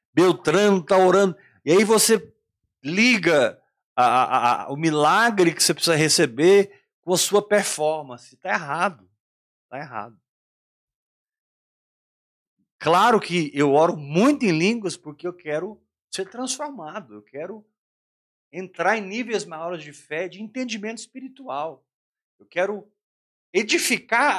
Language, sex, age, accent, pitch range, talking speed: Portuguese, male, 50-69, Brazilian, 160-235 Hz, 115 wpm